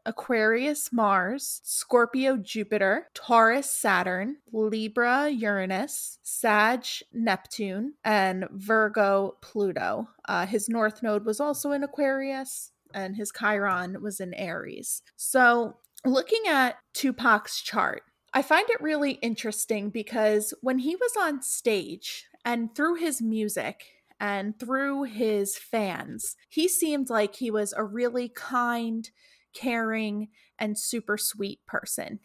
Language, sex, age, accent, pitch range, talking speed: English, female, 20-39, American, 210-250 Hz, 105 wpm